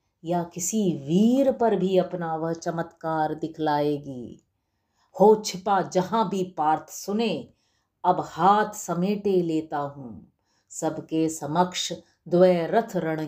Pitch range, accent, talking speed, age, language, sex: 155-205 Hz, native, 105 wpm, 50-69, Hindi, female